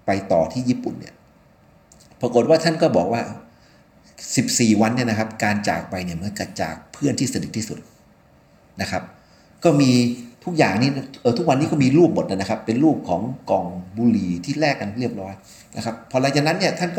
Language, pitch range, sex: Thai, 105-150 Hz, male